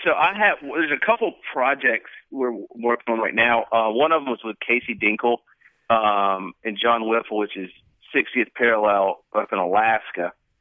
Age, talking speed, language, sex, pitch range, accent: 40-59, 175 wpm, English, male, 100-130 Hz, American